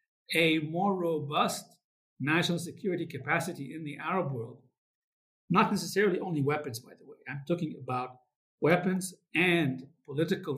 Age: 50-69